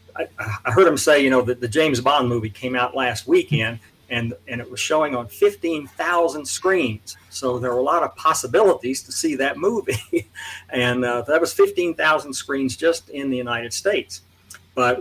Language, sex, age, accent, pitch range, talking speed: English, male, 50-69, American, 120-150 Hz, 185 wpm